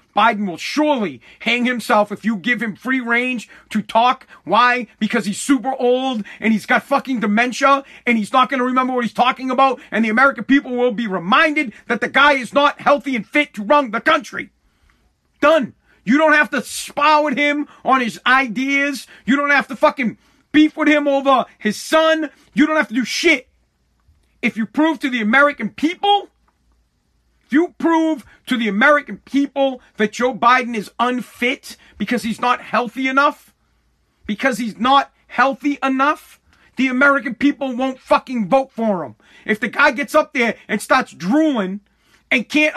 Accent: American